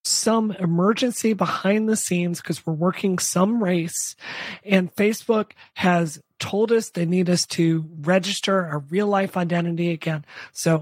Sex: male